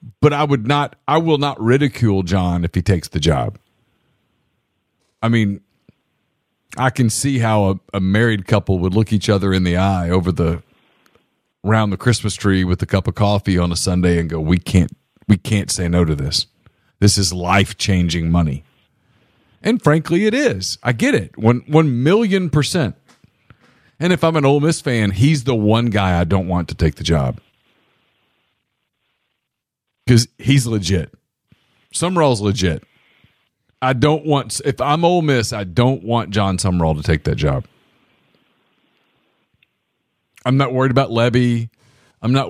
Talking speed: 165 wpm